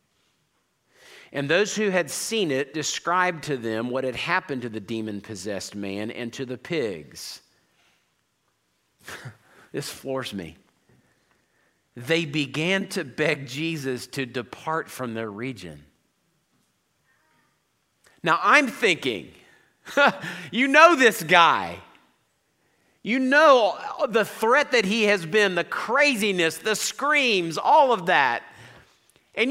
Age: 50-69